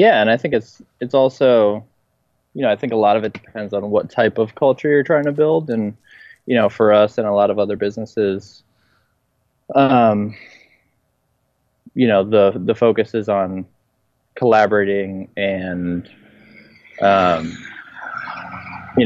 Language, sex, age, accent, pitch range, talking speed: English, male, 20-39, American, 100-115 Hz, 150 wpm